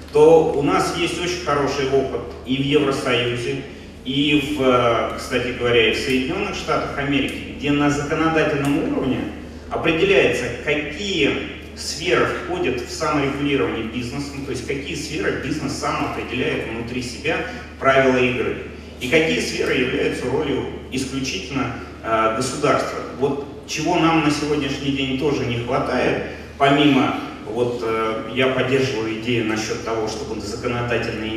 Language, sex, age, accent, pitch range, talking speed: Russian, male, 30-49, native, 115-140 Hz, 130 wpm